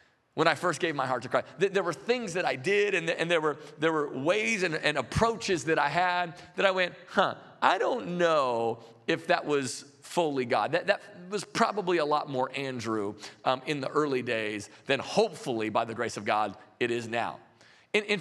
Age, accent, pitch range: 40-59, American, 125-175 Hz